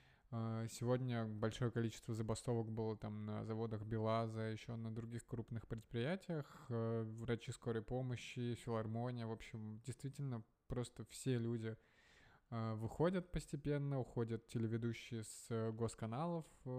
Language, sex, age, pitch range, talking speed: Russian, male, 20-39, 115-130 Hz, 105 wpm